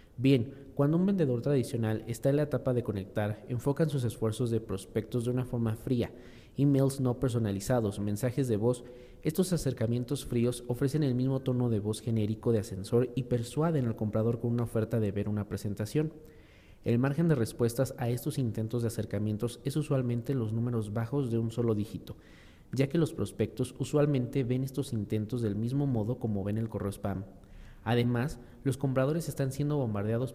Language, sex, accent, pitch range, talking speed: English, male, Mexican, 110-135 Hz, 175 wpm